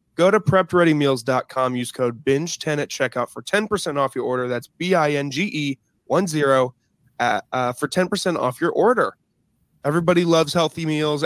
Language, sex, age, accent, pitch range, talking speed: English, male, 20-39, American, 130-170 Hz, 160 wpm